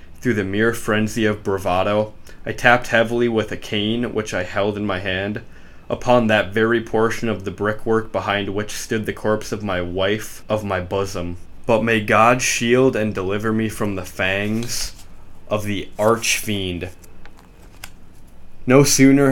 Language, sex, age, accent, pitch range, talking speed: English, male, 20-39, American, 95-110 Hz, 160 wpm